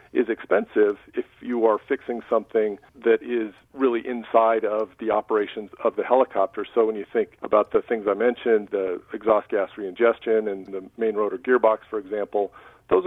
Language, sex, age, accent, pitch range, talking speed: English, male, 50-69, American, 110-145 Hz, 180 wpm